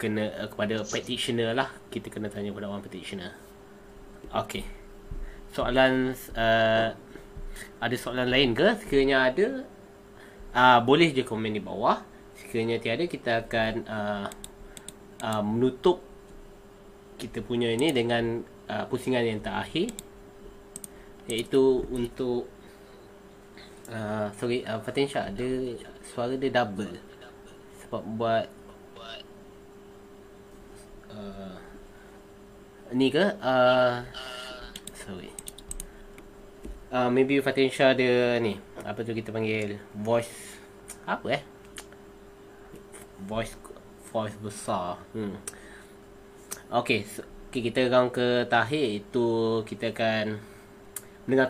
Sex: male